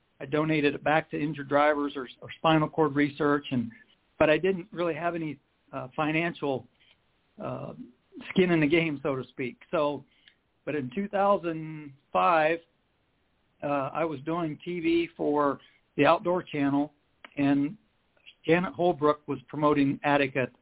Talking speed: 145 wpm